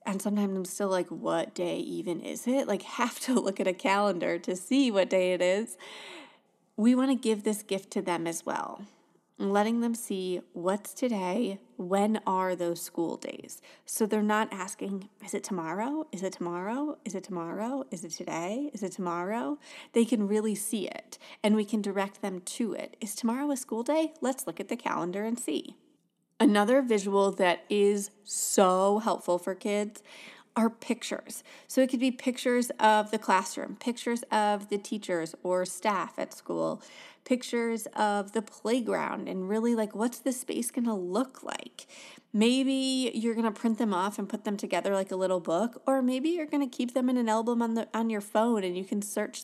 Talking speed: 190 wpm